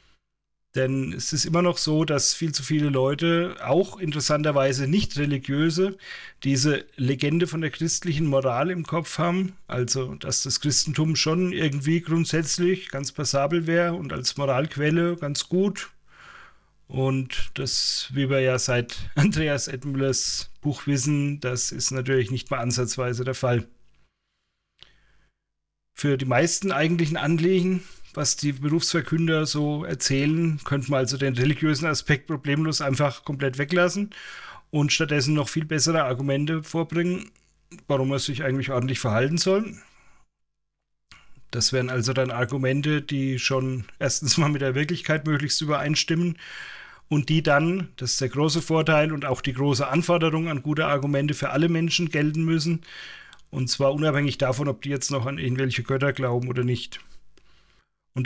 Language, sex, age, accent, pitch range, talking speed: English, male, 40-59, German, 135-160 Hz, 145 wpm